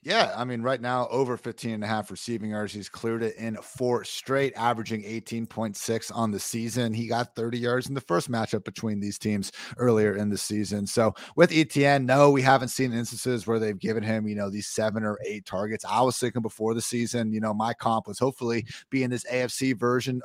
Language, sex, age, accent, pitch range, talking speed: English, male, 30-49, American, 110-135 Hz, 215 wpm